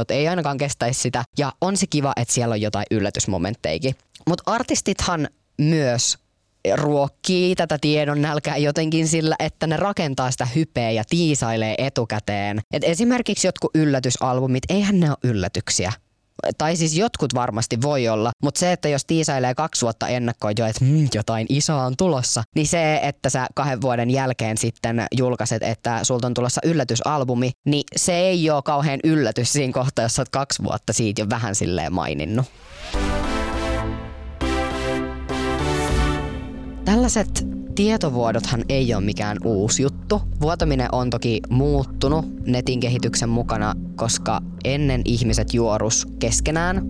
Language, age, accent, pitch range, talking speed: Finnish, 20-39, native, 110-150 Hz, 140 wpm